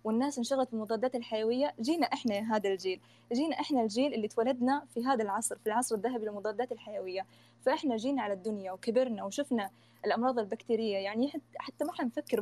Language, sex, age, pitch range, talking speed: Arabic, female, 20-39, 200-235 Hz, 165 wpm